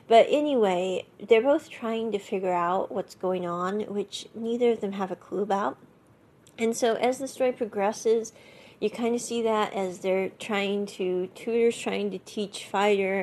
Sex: female